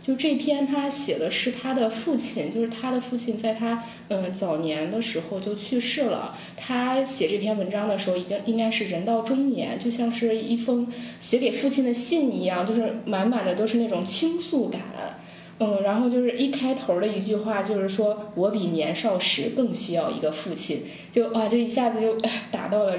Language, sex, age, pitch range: Chinese, female, 10-29, 200-255 Hz